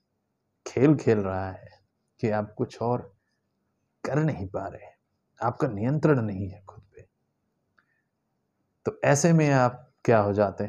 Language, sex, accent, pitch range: Hindi, male, native, 100-130 Hz